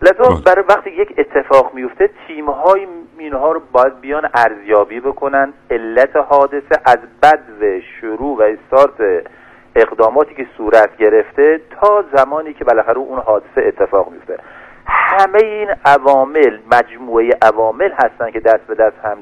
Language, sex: Persian, male